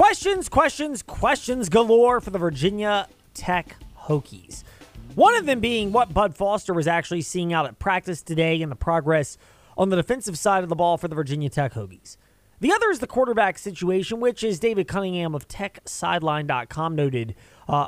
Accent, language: American, English